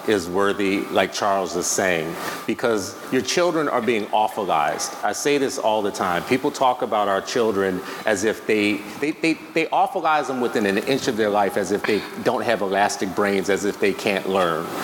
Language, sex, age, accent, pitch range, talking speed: English, male, 40-59, American, 120-175 Hz, 200 wpm